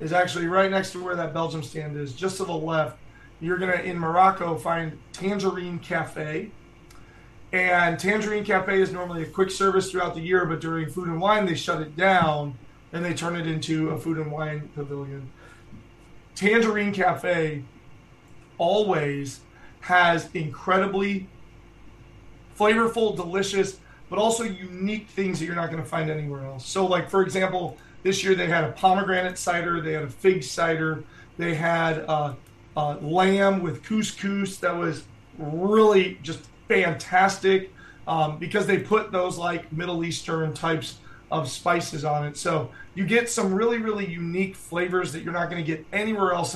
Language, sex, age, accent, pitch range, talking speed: English, male, 30-49, American, 155-190 Hz, 165 wpm